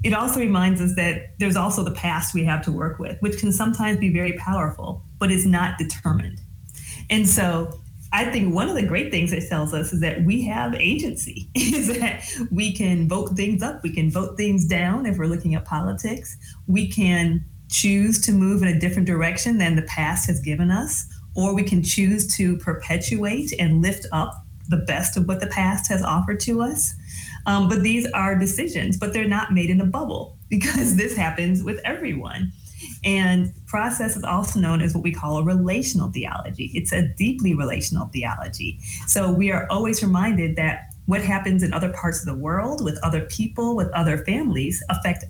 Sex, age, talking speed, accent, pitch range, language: female, 30-49, 195 wpm, American, 160-200 Hz, English